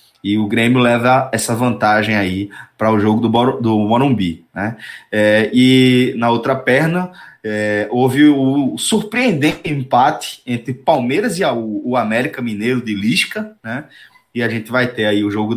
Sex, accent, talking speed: male, Brazilian, 150 wpm